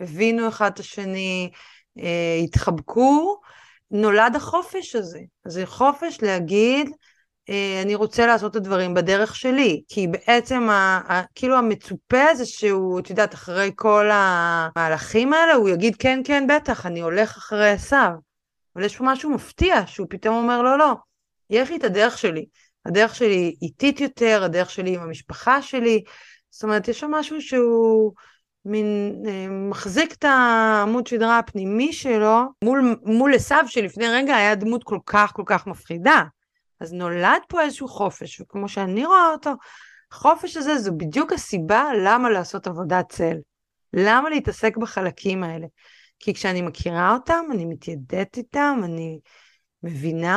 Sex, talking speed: female, 150 wpm